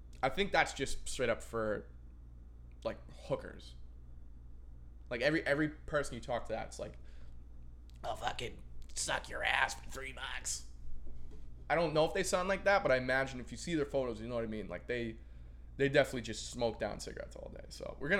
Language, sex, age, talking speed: English, male, 20-39, 200 wpm